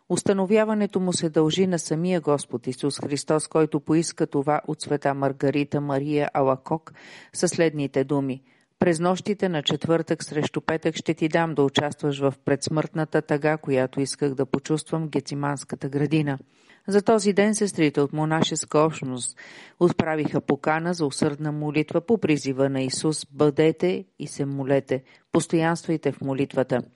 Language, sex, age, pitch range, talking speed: Bulgarian, female, 40-59, 140-170 Hz, 140 wpm